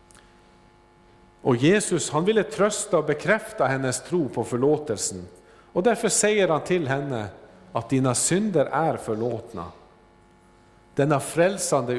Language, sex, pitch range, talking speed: Swedish, male, 120-175 Hz, 120 wpm